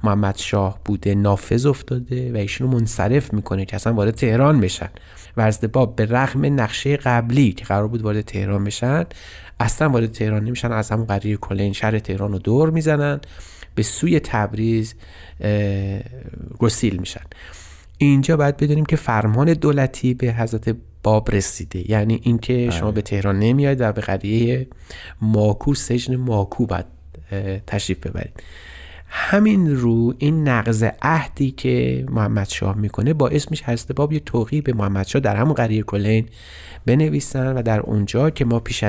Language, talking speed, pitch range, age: Persian, 150 wpm, 100-125 Hz, 30-49